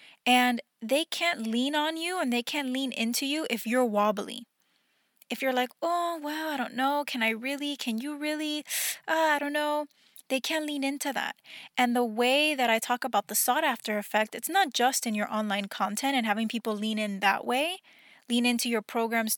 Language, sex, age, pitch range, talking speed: English, female, 10-29, 225-280 Hz, 205 wpm